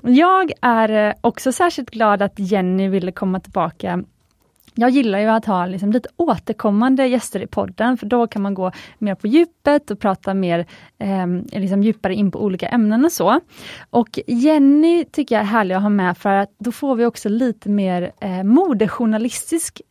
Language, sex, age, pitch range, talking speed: Swedish, female, 30-49, 195-250 Hz, 170 wpm